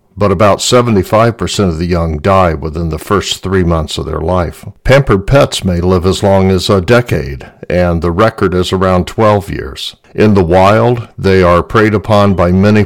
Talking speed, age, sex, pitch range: 185 wpm, 60-79, male, 85-105 Hz